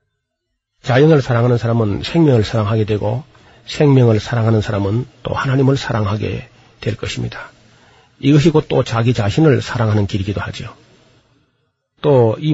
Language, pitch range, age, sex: Korean, 110-140 Hz, 40-59, male